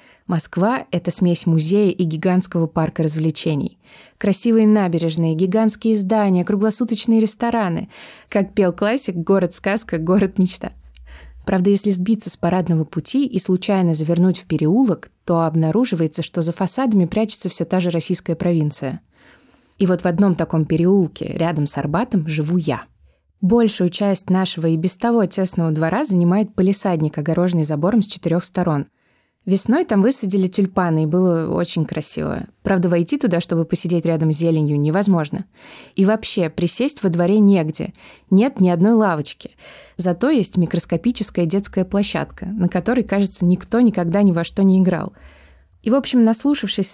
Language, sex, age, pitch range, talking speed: Russian, female, 20-39, 170-200 Hz, 145 wpm